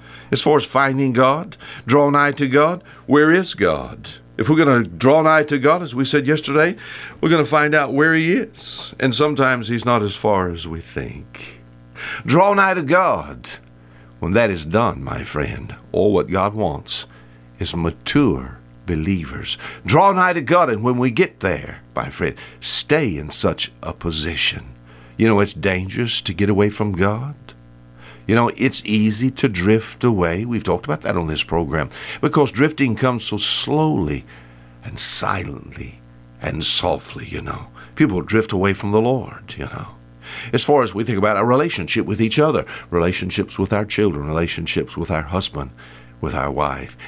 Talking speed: 175 wpm